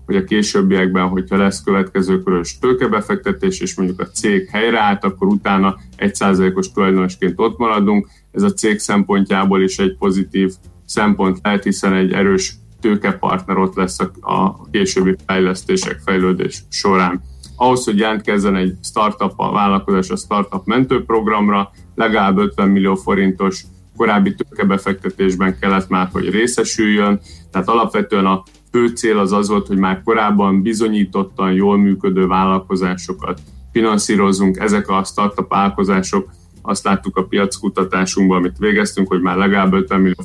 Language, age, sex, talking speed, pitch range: Hungarian, 30-49, male, 135 wpm, 95-110 Hz